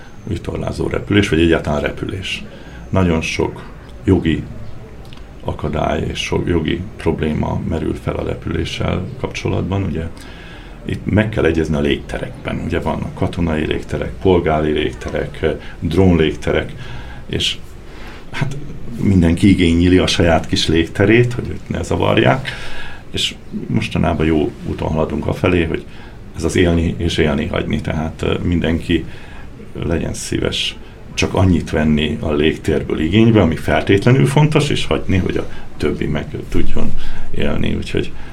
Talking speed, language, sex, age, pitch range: 125 wpm, Hungarian, male, 60-79, 80-105 Hz